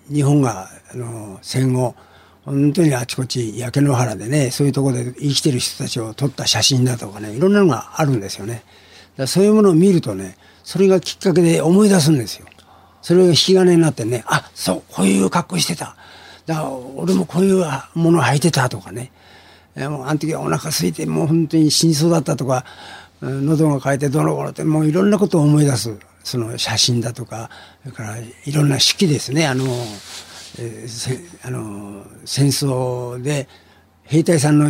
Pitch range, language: 110-150 Hz, Japanese